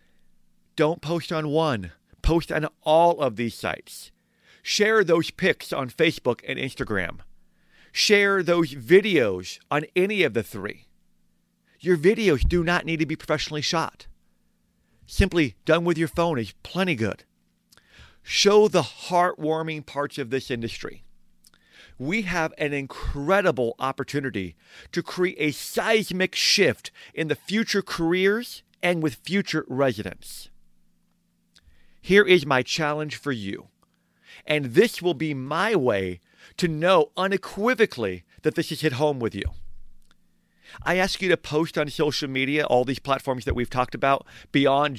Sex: male